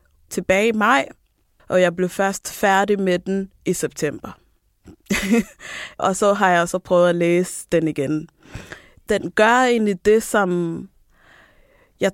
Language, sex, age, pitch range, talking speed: Danish, female, 20-39, 175-205 Hz, 140 wpm